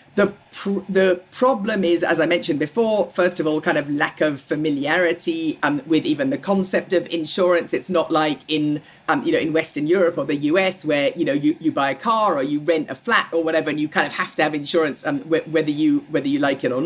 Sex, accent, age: female, British, 40-59